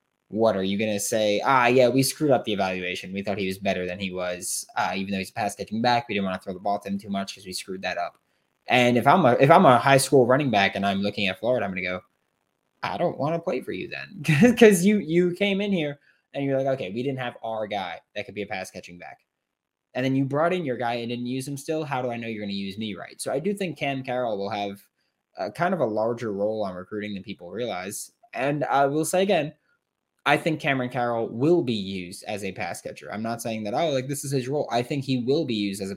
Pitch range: 105-145 Hz